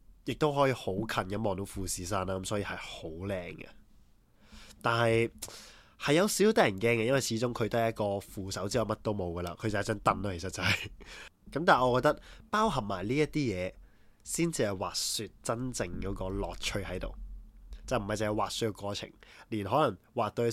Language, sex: Chinese, male